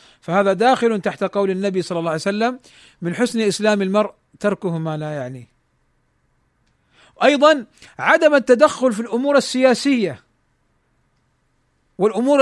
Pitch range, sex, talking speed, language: 205-265 Hz, male, 115 wpm, Arabic